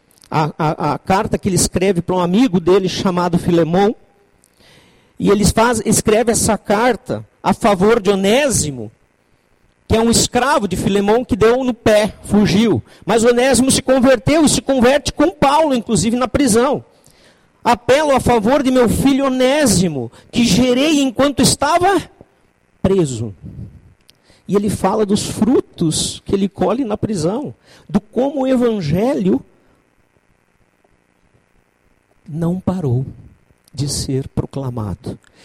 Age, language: 50-69, Portuguese